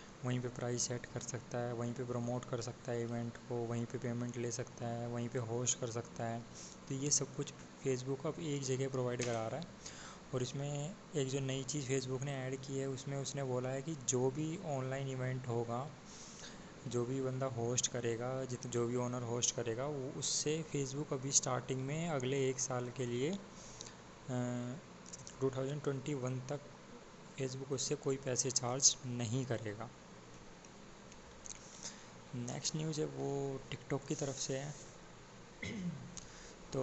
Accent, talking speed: native, 165 wpm